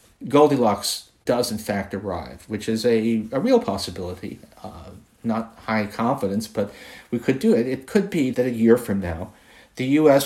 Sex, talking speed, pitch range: male, 175 wpm, 100-125 Hz